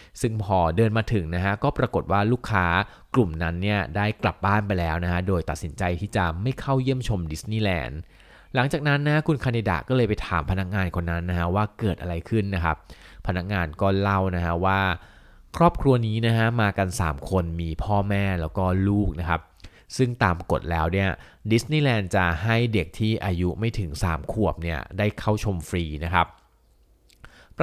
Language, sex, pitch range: Thai, male, 90-115 Hz